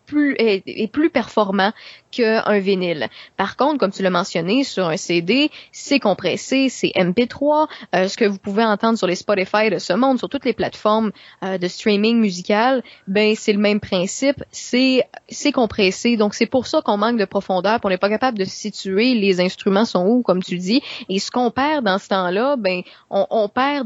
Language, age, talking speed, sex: French, 20-39, 200 wpm, female